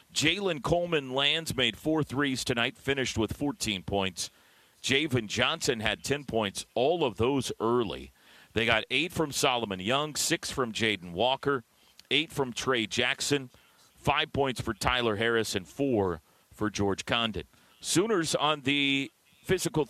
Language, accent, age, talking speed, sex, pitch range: English, American, 40-59, 145 wpm, male, 105-140 Hz